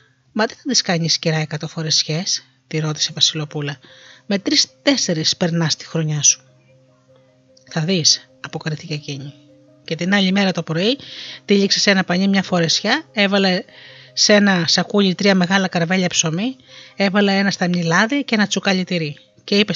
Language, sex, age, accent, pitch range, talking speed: Greek, female, 30-49, native, 155-215 Hz, 150 wpm